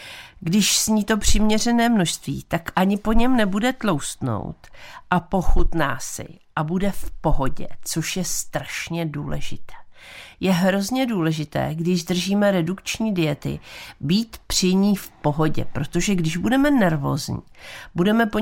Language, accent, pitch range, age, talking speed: Czech, native, 155-210 Hz, 50-69, 130 wpm